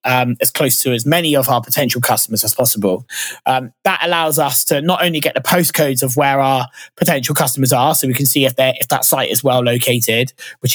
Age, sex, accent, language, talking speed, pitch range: 20-39, male, British, English, 230 wpm, 130-165 Hz